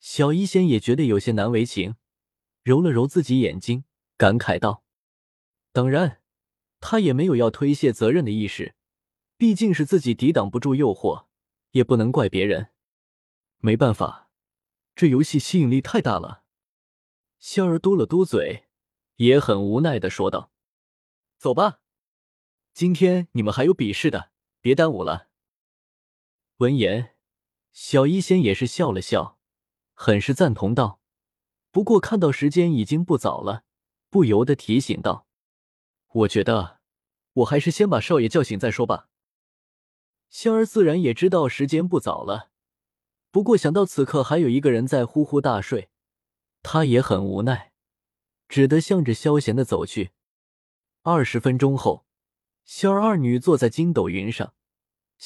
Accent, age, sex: native, 20-39, male